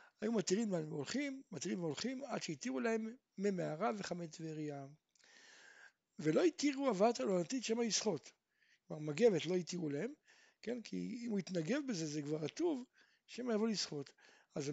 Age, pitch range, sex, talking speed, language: 60-79, 165-235 Hz, male, 145 wpm, Hebrew